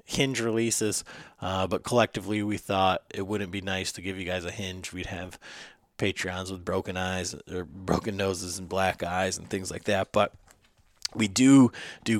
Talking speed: 180 wpm